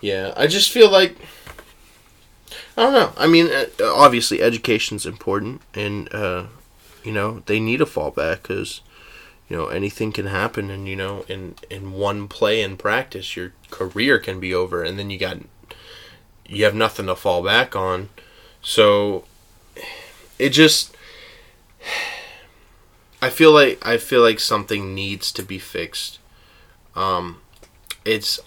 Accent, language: American, English